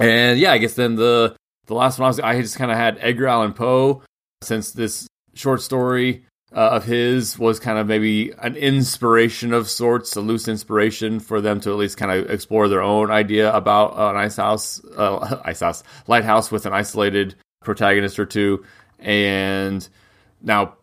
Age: 30-49